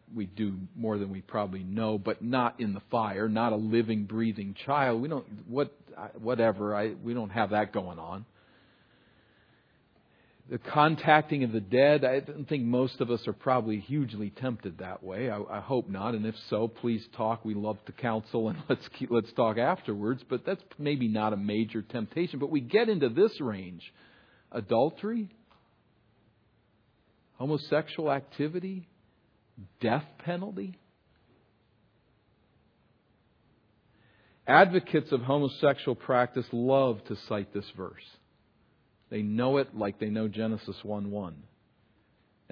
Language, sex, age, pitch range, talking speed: English, male, 50-69, 105-130 Hz, 135 wpm